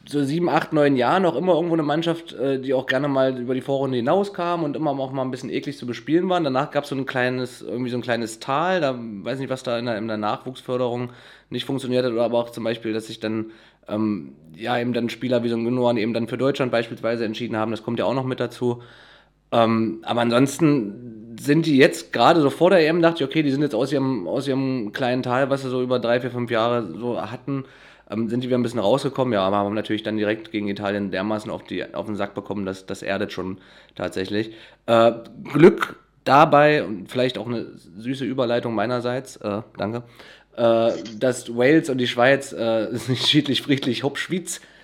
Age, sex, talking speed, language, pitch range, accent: 30-49, male, 220 wpm, German, 110-135 Hz, German